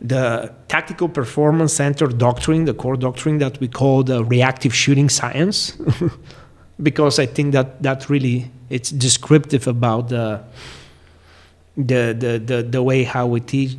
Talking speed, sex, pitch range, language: 145 wpm, male, 125-165 Hz, Czech